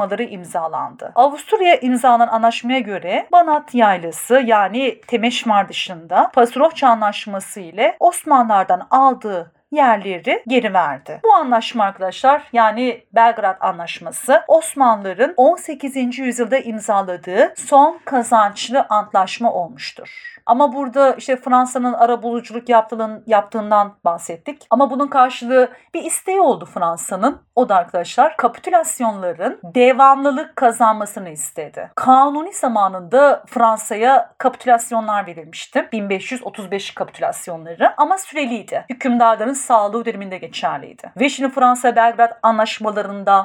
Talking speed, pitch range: 100 wpm, 205-270 Hz